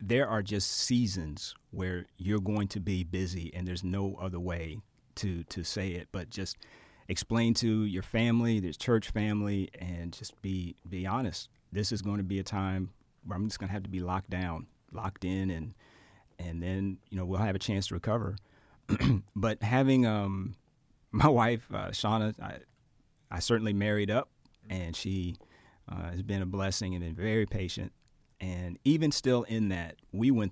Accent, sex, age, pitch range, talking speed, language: American, male, 30-49, 95-110 Hz, 185 wpm, English